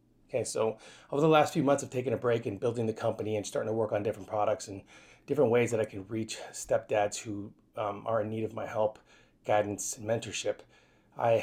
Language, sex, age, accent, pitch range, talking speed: English, male, 30-49, American, 105-130 Hz, 220 wpm